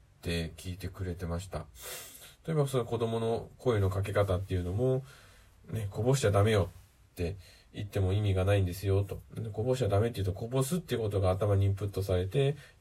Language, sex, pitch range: Japanese, male, 95-120 Hz